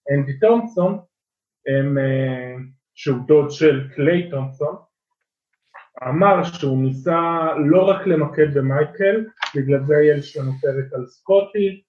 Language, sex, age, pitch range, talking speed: Hebrew, male, 20-39, 140-185 Hz, 115 wpm